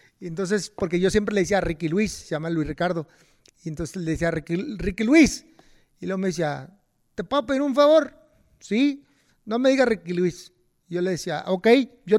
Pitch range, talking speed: 160-210 Hz, 200 wpm